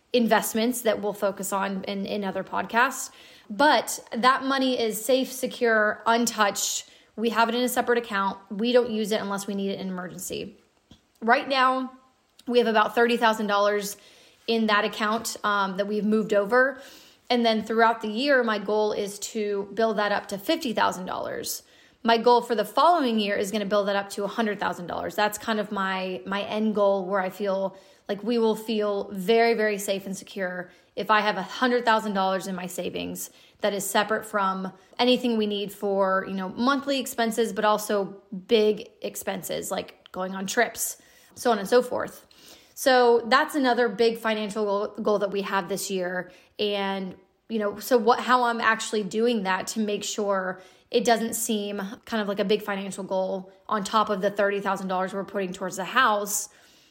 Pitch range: 195-230 Hz